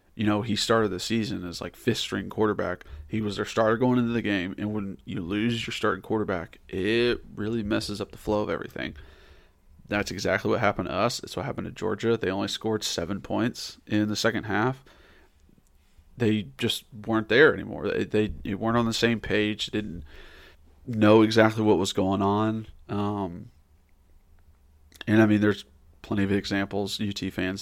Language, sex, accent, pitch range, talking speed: English, male, American, 90-110 Hz, 180 wpm